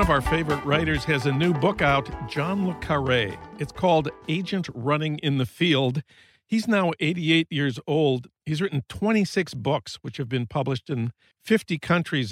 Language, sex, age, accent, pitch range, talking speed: English, male, 50-69, American, 135-170 Hz, 175 wpm